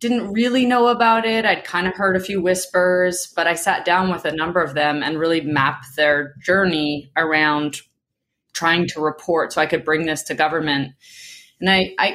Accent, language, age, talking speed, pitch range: American, English, 20-39, 195 wpm, 150-180 Hz